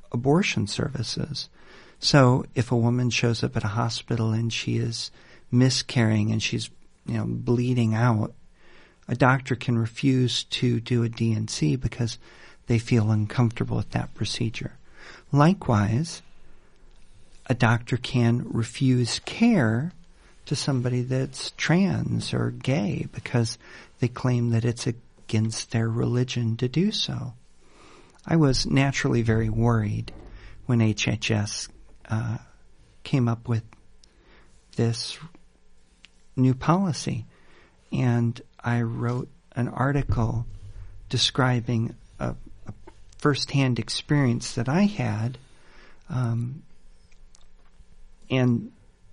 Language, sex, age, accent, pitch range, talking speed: English, male, 50-69, American, 110-125 Hz, 105 wpm